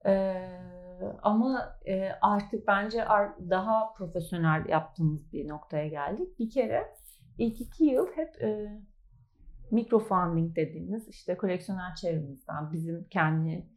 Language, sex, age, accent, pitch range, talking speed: Turkish, female, 40-59, native, 160-225 Hz, 110 wpm